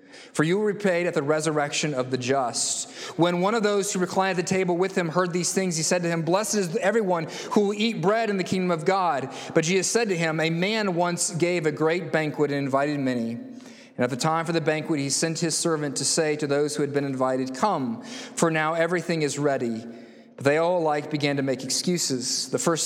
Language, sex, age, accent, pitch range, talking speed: English, male, 30-49, American, 140-180 Hz, 235 wpm